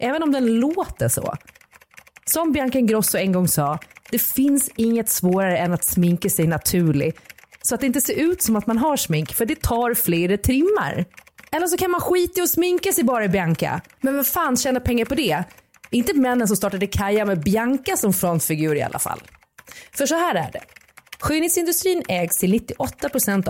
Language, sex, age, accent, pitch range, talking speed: Swedish, female, 30-49, native, 185-280 Hz, 195 wpm